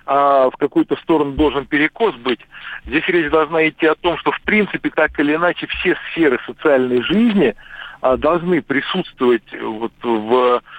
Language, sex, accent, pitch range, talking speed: Russian, male, native, 130-160 Hz, 145 wpm